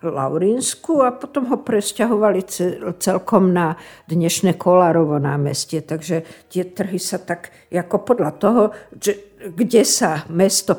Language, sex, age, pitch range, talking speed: Slovak, female, 60-79, 175-205 Hz, 120 wpm